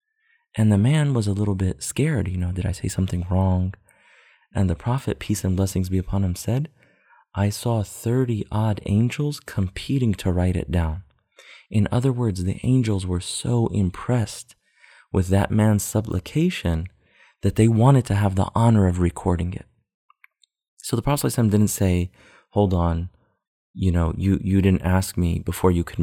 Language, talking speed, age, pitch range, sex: English, 170 wpm, 30-49, 90-115 Hz, male